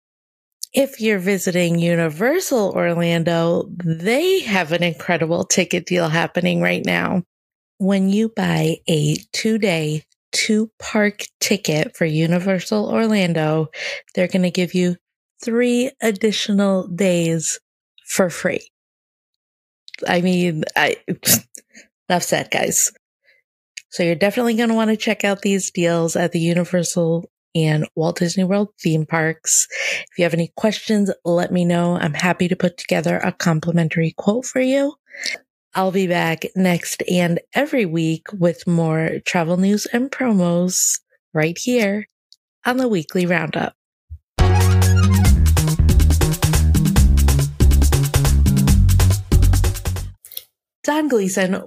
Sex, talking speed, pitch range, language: female, 115 wpm, 160-205 Hz, English